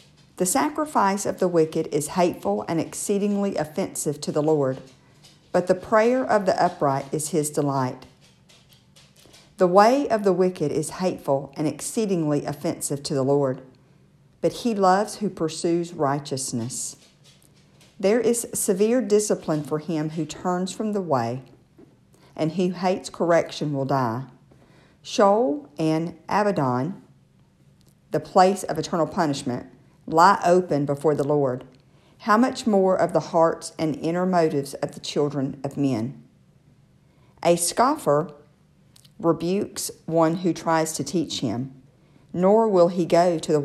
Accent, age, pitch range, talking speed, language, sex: American, 50-69, 145-185 Hz, 135 wpm, English, female